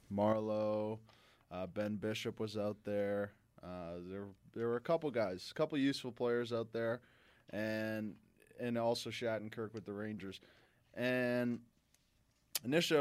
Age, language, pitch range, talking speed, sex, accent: 20-39, English, 105-120 Hz, 135 wpm, male, American